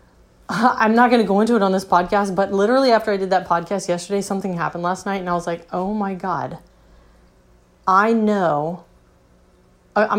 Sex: female